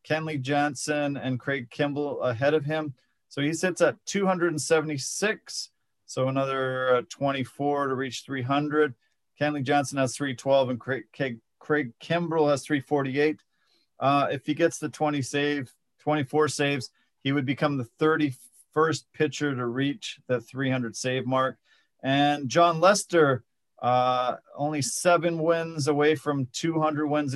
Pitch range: 135-165 Hz